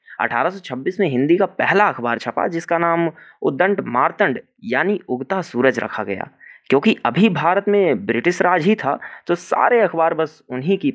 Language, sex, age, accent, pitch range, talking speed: Hindi, male, 30-49, native, 120-180 Hz, 165 wpm